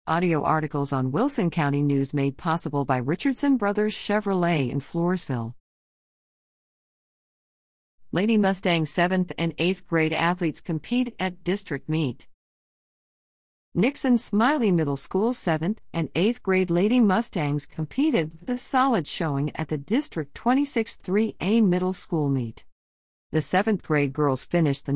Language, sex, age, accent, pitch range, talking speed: English, female, 50-69, American, 140-200 Hz, 125 wpm